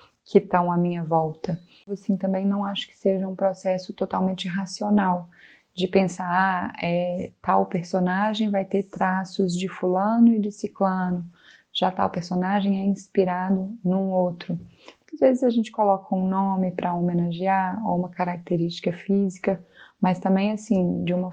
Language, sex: Portuguese, female